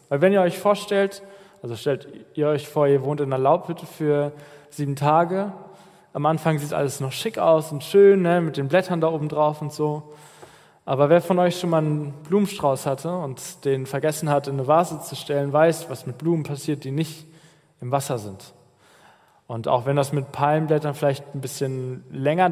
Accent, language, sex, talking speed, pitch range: German, German, male, 195 wpm, 135-165 Hz